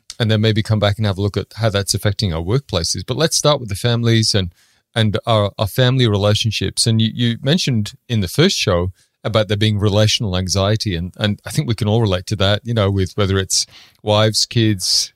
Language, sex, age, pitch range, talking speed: English, male, 30-49, 105-125 Hz, 225 wpm